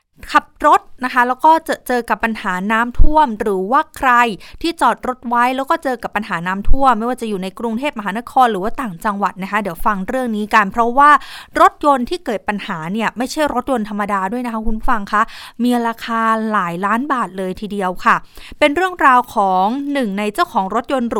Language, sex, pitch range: Thai, female, 210-260 Hz